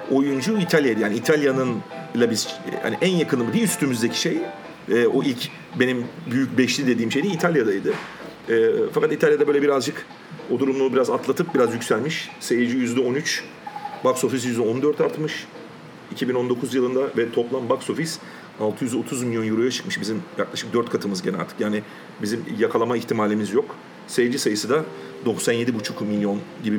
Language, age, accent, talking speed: Turkish, 40-59, native, 135 wpm